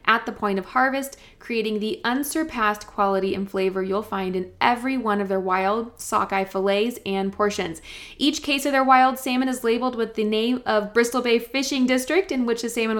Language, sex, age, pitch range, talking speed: English, female, 20-39, 195-255 Hz, 200 wpm